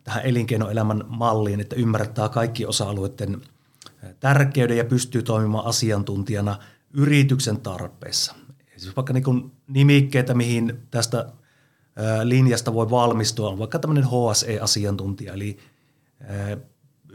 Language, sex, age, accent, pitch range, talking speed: Finnish, male, 30-49, native, 105-130 Hz, 100 wpm